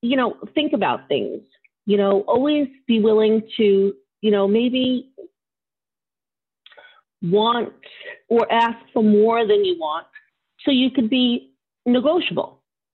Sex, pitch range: female, 195-260 Hz